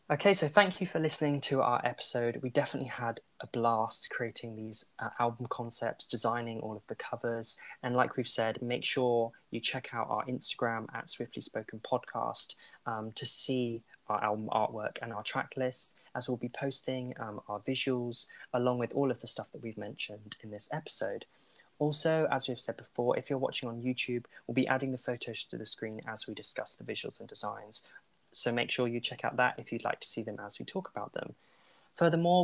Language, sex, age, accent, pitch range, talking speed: English, male, 20-39, British, 115-140 Hz, 205 wpm